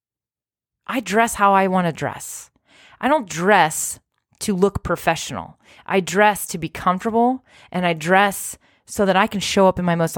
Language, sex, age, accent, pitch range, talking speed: English, female, 30-49, American, 160-215 Hz, 175 wpm